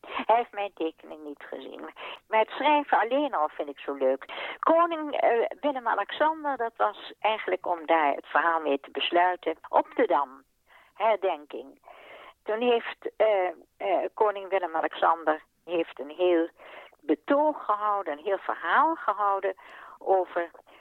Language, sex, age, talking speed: Dutch, female, 60-79, 140 wpm